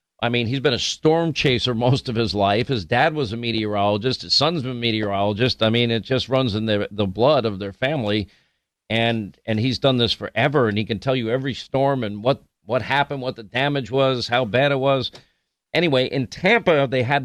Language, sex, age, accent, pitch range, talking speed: English, male, 50-69, American, 110-140 Hz, 220 wpm